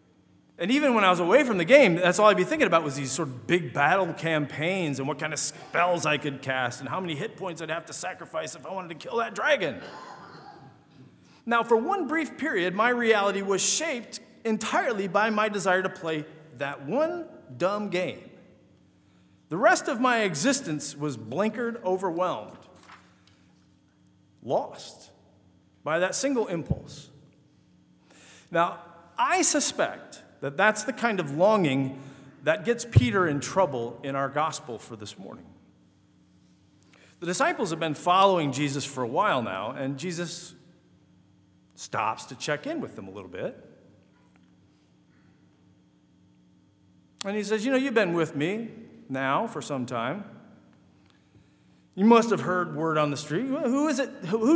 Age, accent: 40-59, American